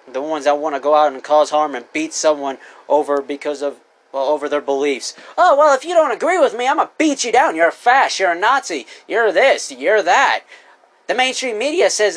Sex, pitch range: male, 205-335 Hz